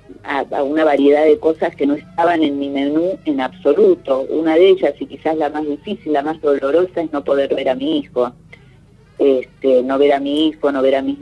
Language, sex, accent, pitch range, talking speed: Spanish, female, Argentinian, 140-175 Hz, 220 wpm